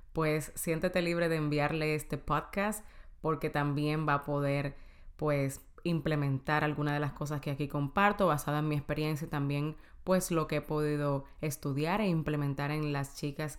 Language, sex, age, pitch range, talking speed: Spanish, female, 20-39, 145-165 Hz, 170 wpm